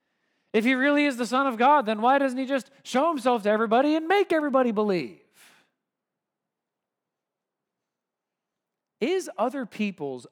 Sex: male